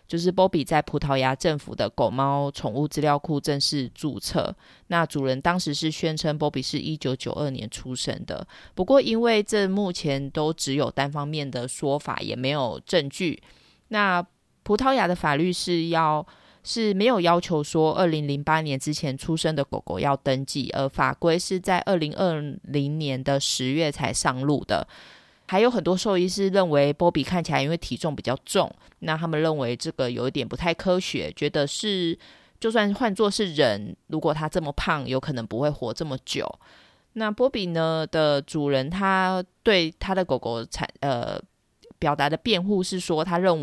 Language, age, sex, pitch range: Chinese, 20-39, female, 140-180 Hz